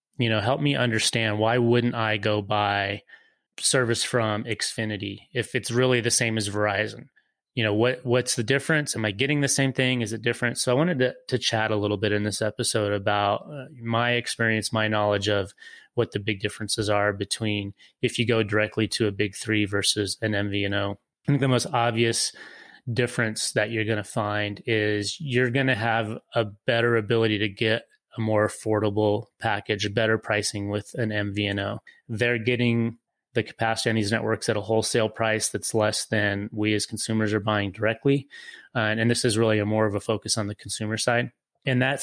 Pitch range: 105-120 Hz